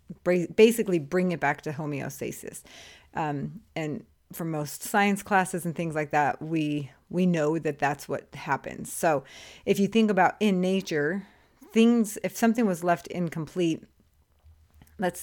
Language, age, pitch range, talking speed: English, 30-49, 150-180 Hz, 145 wpm